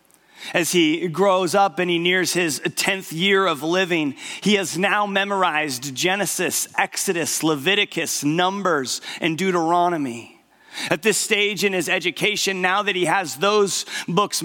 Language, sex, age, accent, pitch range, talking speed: English, male, 40-59, American, 165-200 Hz, 140 wpm